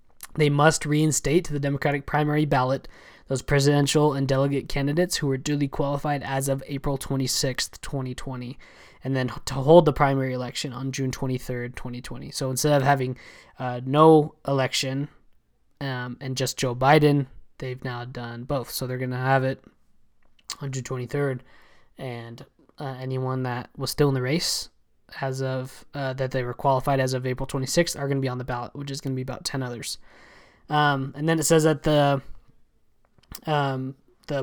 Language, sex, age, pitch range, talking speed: English, male, 20-39, 130-150 Hz, 180 wpm